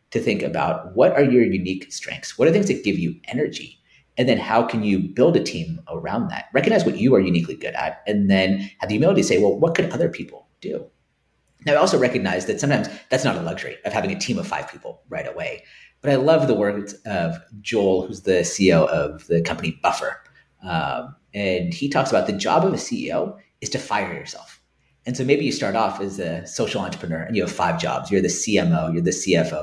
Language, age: English, 40-59